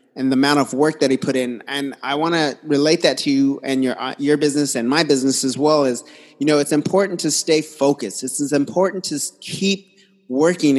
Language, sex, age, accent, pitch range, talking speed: English, male, 30-49, American, 130-155 Hz, 215 wpm